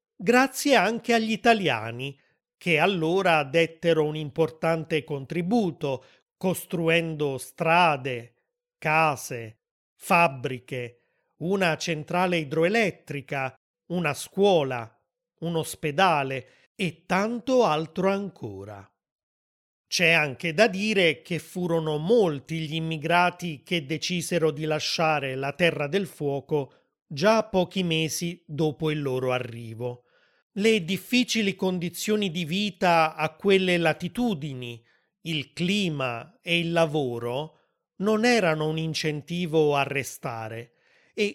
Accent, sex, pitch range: native, male, 145-190 Hz